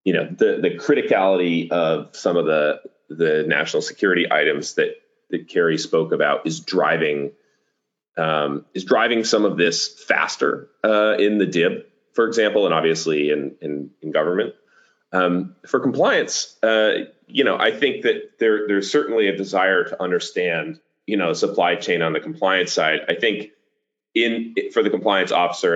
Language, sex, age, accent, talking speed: English, male, 30-49, American, 165 wpm